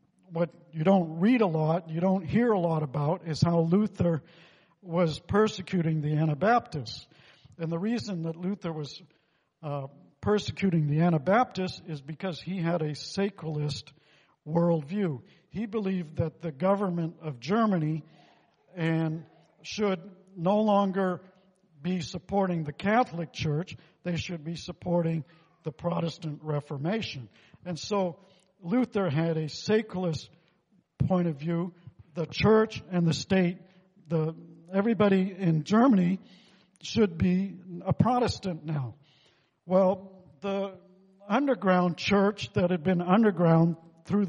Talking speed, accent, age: 125 wpm, American, 50-69